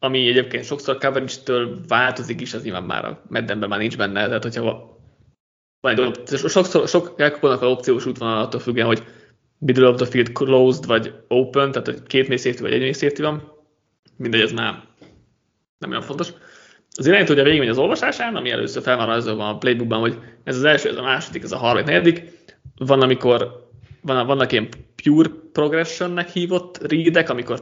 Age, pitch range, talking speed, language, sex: 20-39, 115-140 Hz, 165 wpm, Hungarian, male